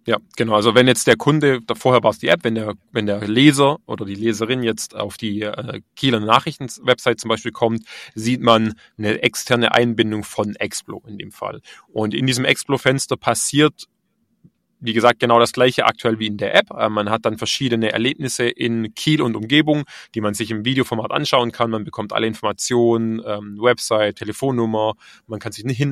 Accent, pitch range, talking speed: German, 110-130 Hz, 185 wpm